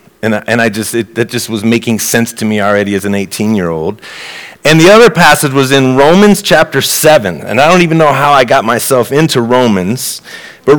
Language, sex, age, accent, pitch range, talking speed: English, male, 30-49, American, 115-160 Hz, 215 wpm